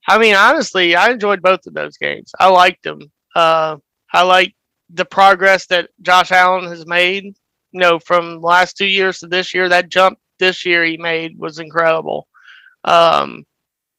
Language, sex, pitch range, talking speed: Slovak, male, 170-185 Hz, 175 wpm